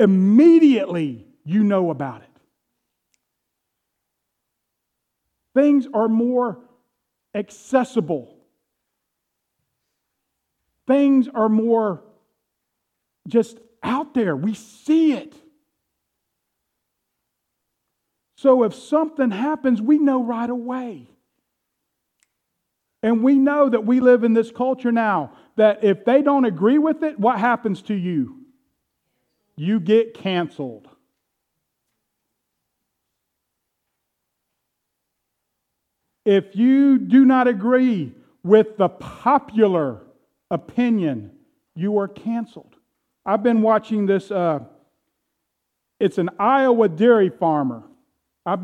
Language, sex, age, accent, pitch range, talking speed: English, male, 50-69, American, 195-255 Hz, 90 wpm